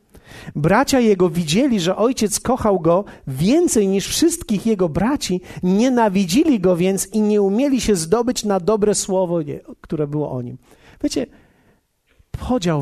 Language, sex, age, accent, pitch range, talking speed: Polish, male, 50-69, native, 175-235 Hz, 135 wpm